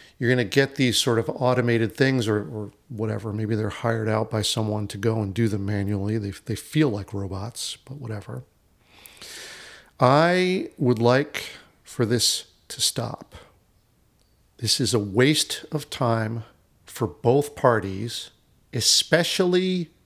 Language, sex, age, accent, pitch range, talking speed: English, male, 50-69, American, 110-145 Hz, 145 wpm